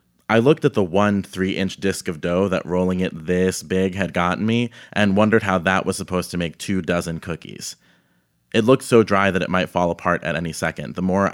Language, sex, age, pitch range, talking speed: English, male, 30-49, 80-95 Hz, 220 wpm